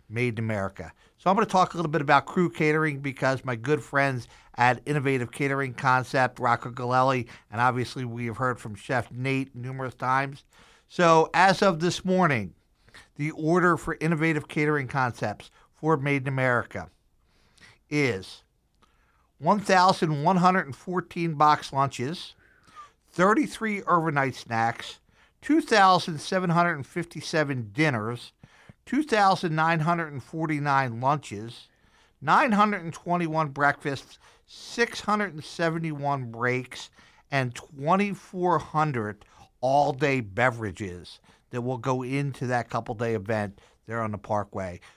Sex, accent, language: male, American, English